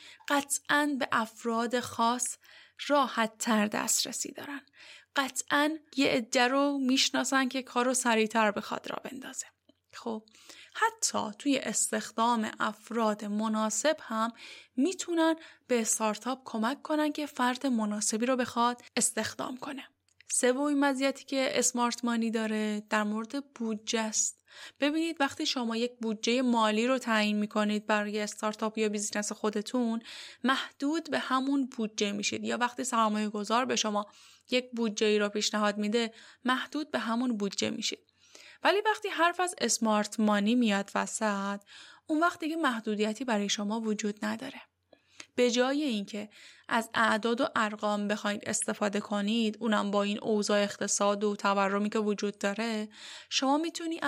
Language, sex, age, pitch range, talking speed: Persian, female, 10-29, 215-275 Hz, 130 wpm